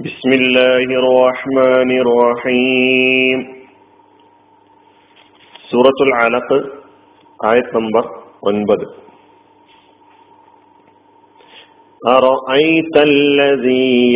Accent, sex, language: native, male, Malayalam